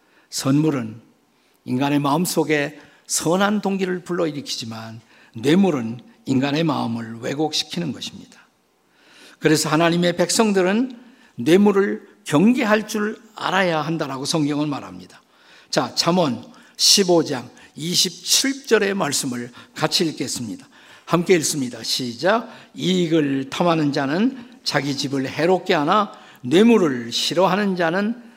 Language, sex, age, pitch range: Korean, male, 50-69, 140-200 Hz